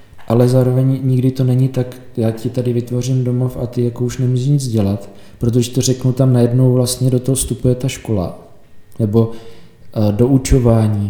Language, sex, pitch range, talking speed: Czech, male, 110-125 Hz, 175 wpm